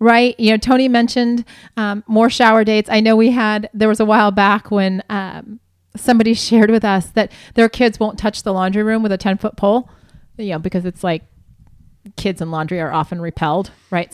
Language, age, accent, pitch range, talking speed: English, 30-49, American, 210-250 Hz, 210 wpm